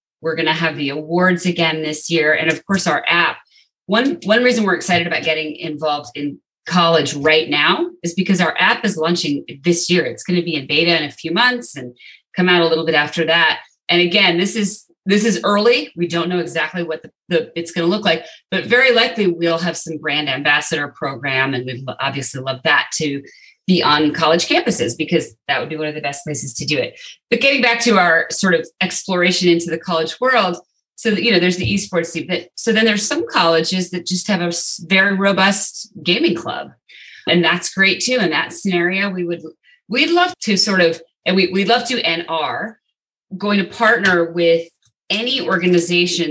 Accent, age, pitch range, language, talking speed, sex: American, 30-49, 160-195 Hz, English, 210 wpm, female